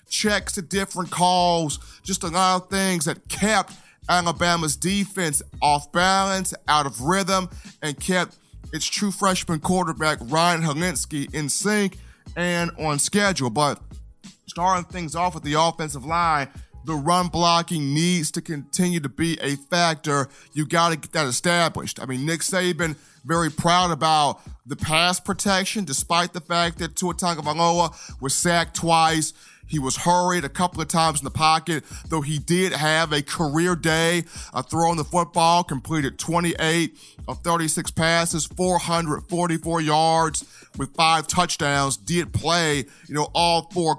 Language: English